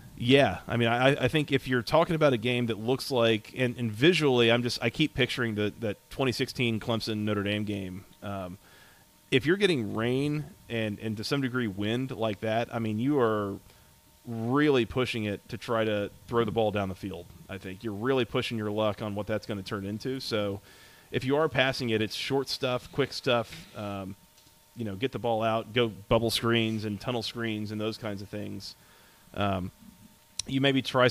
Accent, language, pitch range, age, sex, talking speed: American, English, 105-125 Hz, 30-49, male, 205 wpm